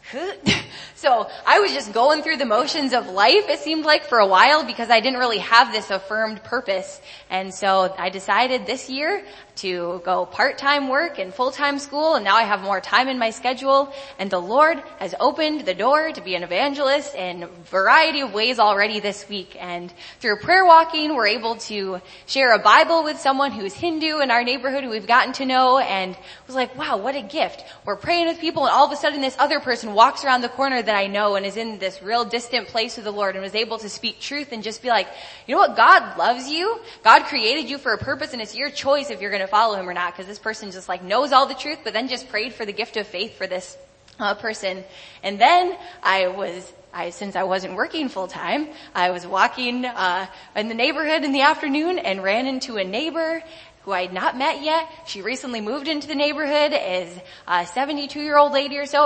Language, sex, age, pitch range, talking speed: English, female, 10-29, 195-290 Hz, 230 wpm